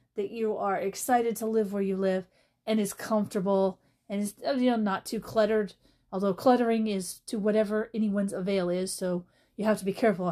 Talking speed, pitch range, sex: 190 wpm, 190-235 Hz, female